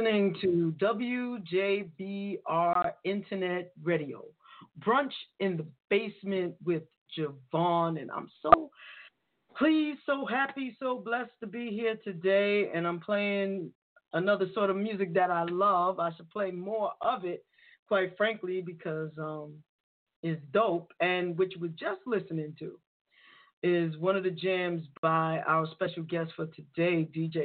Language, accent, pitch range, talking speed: English, American, 165-205 Hz, 135 wpm